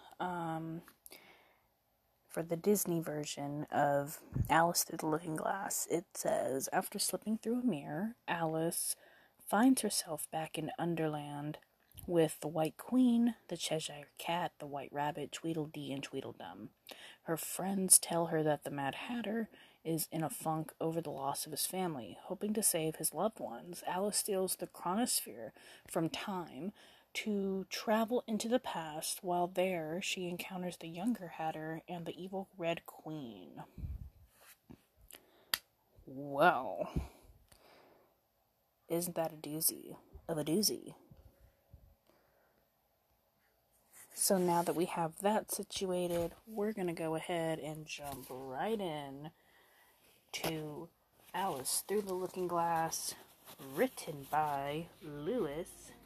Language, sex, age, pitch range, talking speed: English, female, 30-49, 155-190 Hz, 125 wpm